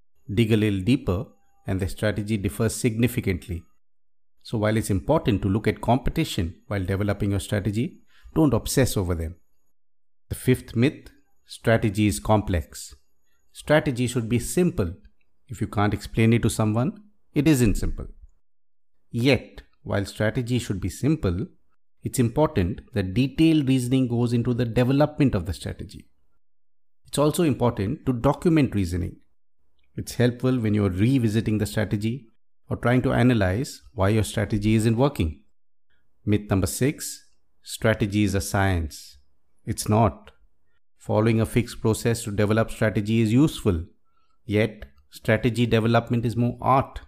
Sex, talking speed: male, 140 wpm